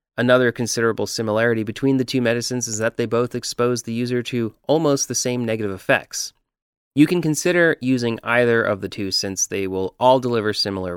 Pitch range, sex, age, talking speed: 110-130 Hz, male, 30-49, 185 wpm